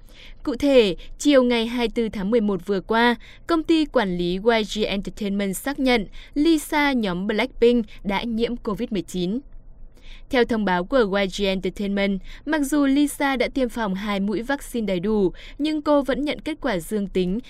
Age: 20-39